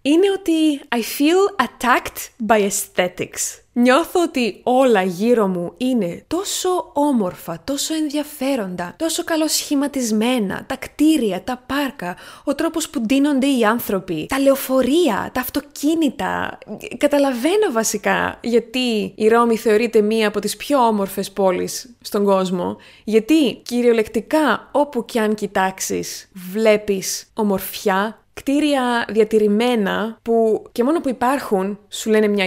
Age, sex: 20-39, female